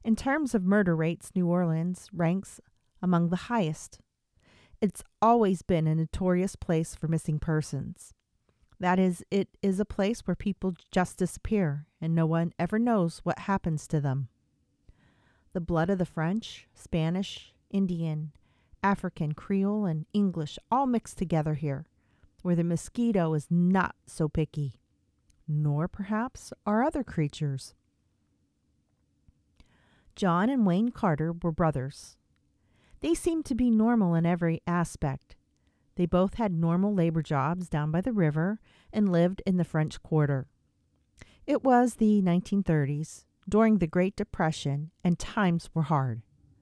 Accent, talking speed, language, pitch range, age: American, 140 wpm, English, 150-195 Hz, 40-59